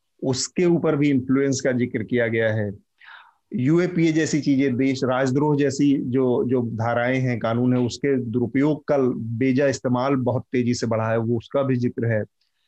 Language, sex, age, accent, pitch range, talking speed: Hindi, male, 30-49, native, 120-160 Hz, 170 wpm